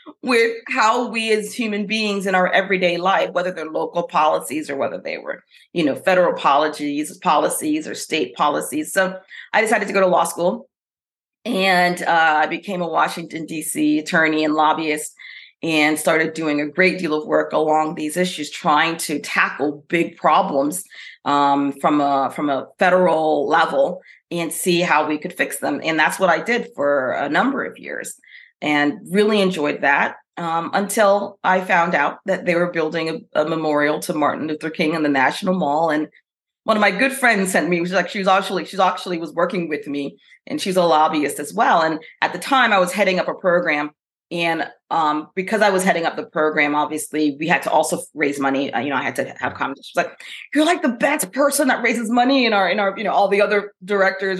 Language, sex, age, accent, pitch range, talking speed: English, female, 40-59, American, 155-210 Hz, 205 wpm